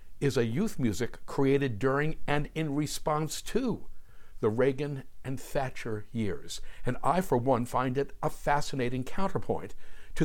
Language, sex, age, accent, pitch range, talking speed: English, male, 60-79, American, 110-165 Hz, 145 wpm